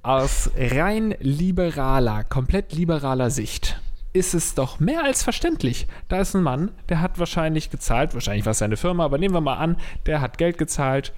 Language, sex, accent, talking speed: German, male, German, 185 wpm